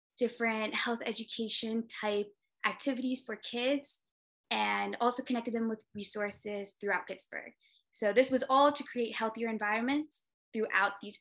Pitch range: 205-260 Hz